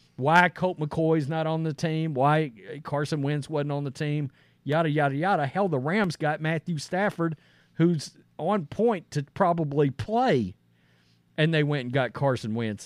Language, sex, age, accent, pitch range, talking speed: English, male, 50-69, American, 135-215 Hz, 170 wpm